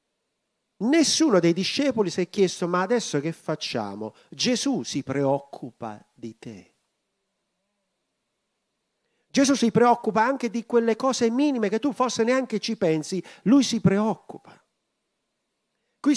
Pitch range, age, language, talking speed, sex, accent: 145-230 Hz, 50-69, Italian, 125 wpm, male, native